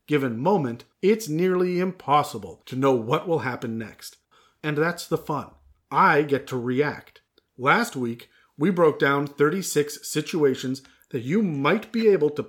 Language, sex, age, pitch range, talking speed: English, male, 40-59, 135-180 Hz, 155 wpm